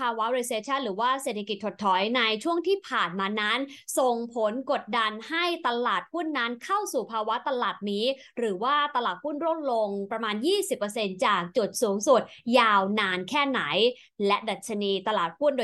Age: 20-39